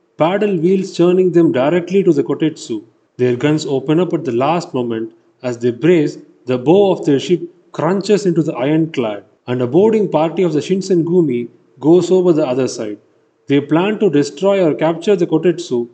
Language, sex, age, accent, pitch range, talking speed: Tamil, male, 30-49, native, 135-185 Hz, 180 wpm